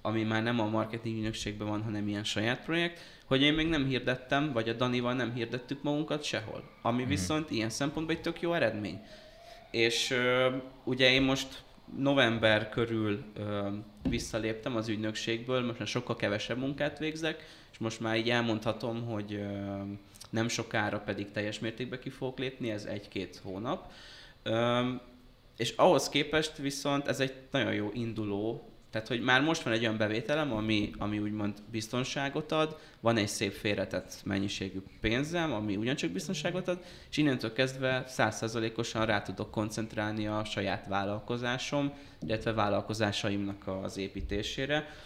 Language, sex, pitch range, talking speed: Hungarian, male, 105-130 Hz, 145 wpm